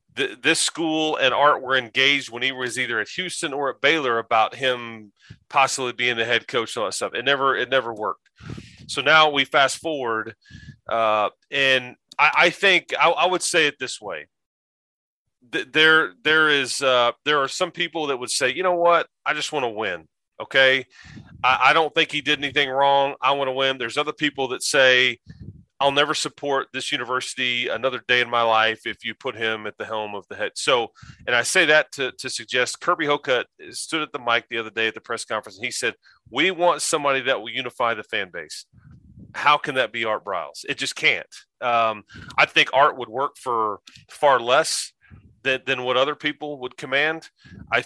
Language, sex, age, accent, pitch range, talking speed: English, male, 30-49, American, 120-150 Hz, 200 wpm